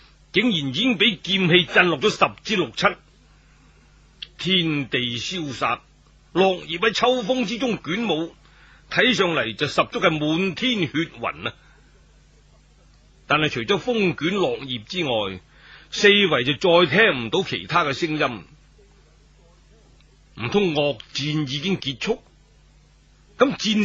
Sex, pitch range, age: male, 140-200 Hz, 30-49